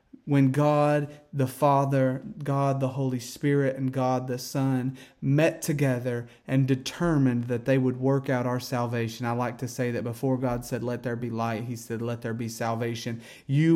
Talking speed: 185 wpm